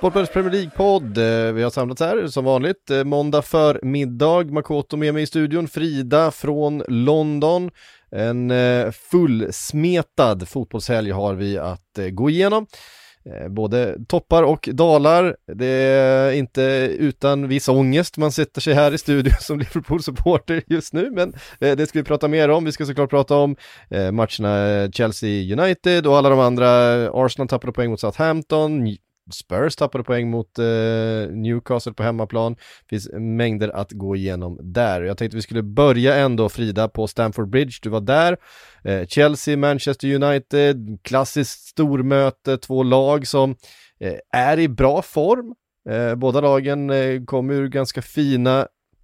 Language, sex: Swedish, male